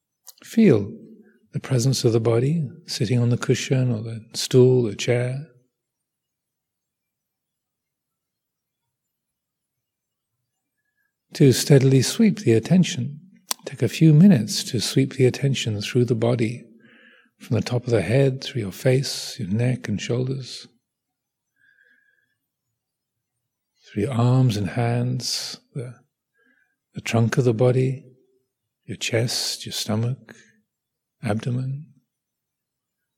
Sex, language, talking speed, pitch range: male, English, 110 wpm, 120-145 Hz